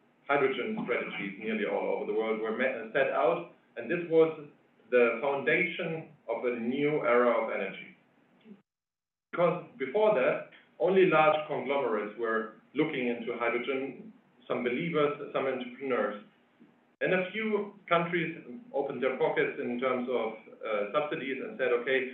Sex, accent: male, German